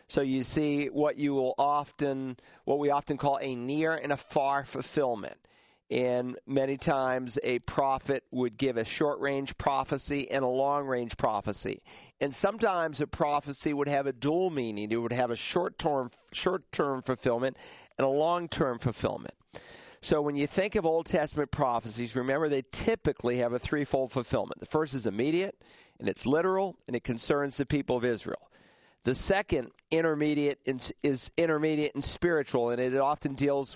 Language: English